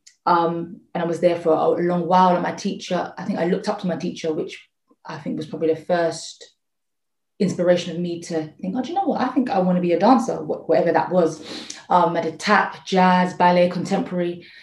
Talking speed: 225 wpm